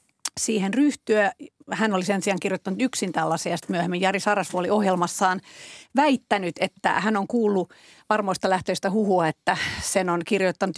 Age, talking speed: 40-59, 150 wpm